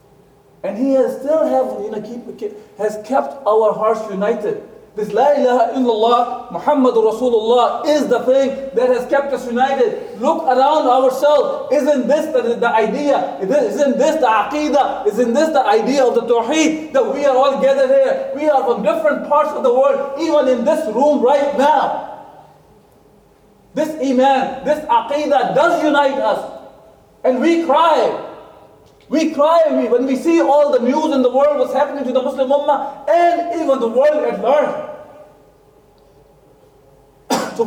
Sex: male